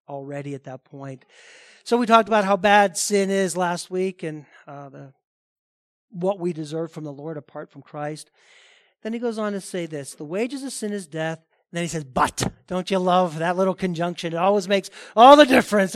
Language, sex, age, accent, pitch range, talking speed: English, male, 40-59, American, 175-235 Hz, 210 wpm